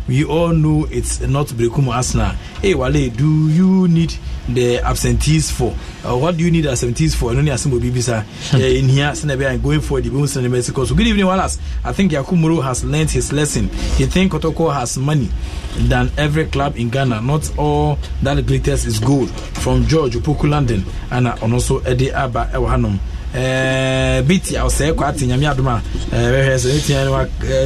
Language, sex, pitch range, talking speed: English, male, 125-155 Hz, 155 wpm